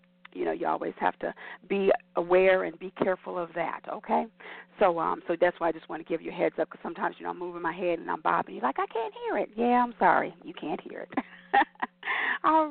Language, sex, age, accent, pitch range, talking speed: English, female, 40-59, American, 175-245 Hz, 250 wpm